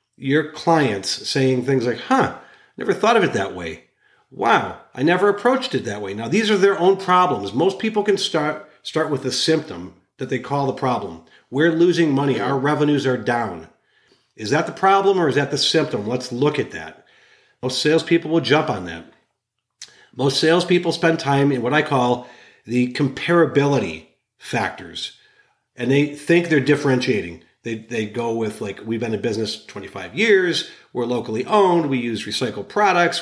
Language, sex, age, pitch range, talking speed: English, male, 40-59, 125-165 Hz, 180 wpm